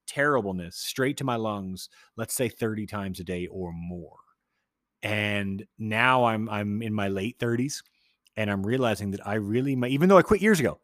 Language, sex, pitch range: English, male, 100-130 Hz